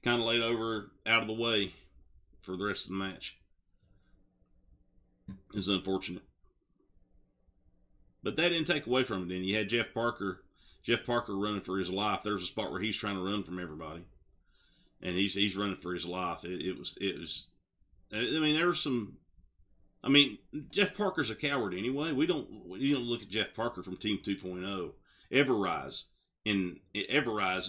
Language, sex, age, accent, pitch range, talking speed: English, male, 40-59, American, 90-110 Hz, 185 wpm